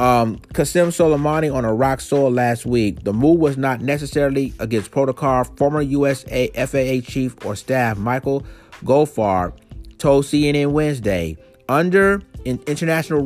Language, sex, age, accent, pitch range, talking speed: English, male, 30-49, American, 115-145 Hz, 125 wpm